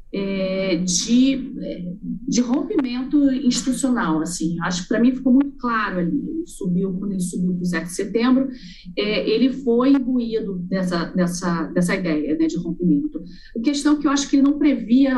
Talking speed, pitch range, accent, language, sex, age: 170 wpm, 180-245 Hz, Brazilian, Portuguese, female, 40-59